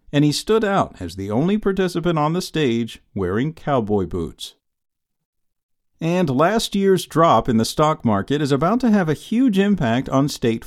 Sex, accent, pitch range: male, American, 120-160 Hz